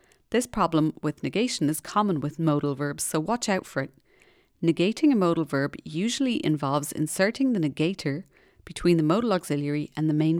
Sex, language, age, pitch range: female, English, 30-49, 145-180 Hz